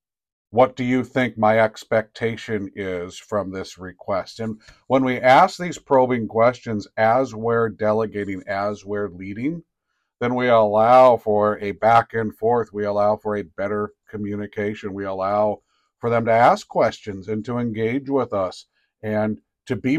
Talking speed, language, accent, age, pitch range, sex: 155 wpm, English, American, 50-69, 100-115 Hz, male